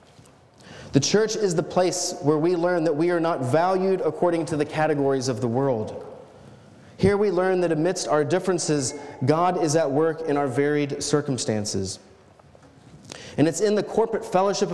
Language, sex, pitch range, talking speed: English, male, 130-175 Hz, 165 wpm